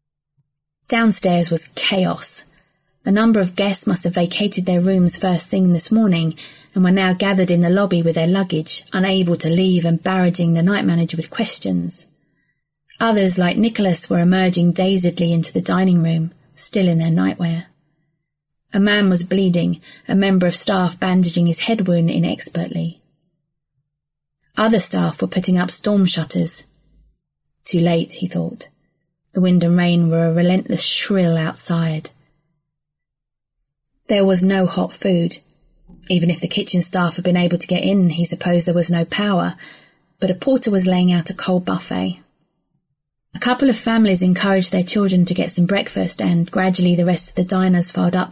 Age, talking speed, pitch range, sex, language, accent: 30-49, 165 wpm, 165-185 Hz, female, English, British